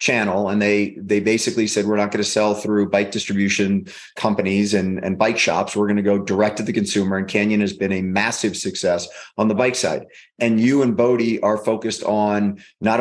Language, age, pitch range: English, 30-49, 100-115 Hz